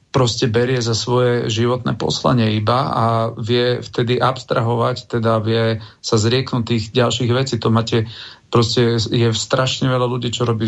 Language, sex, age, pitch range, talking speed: Slovak, male, 40-59, 110-125 Hz, 155 wpm